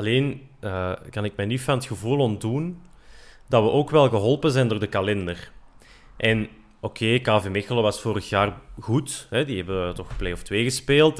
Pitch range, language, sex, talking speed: 105-140 Hz, Dutch, male, 195 wpm